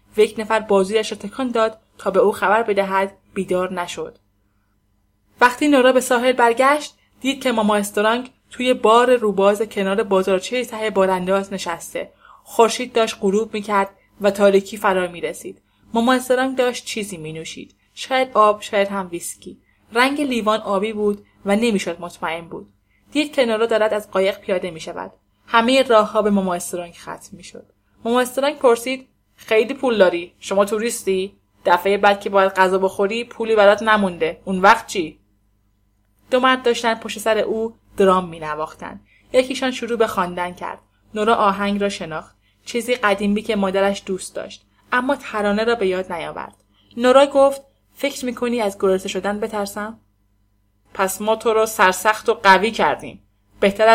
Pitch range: 190-230 Hz